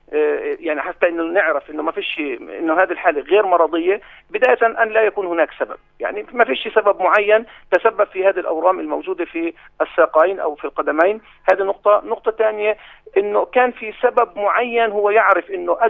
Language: Arabic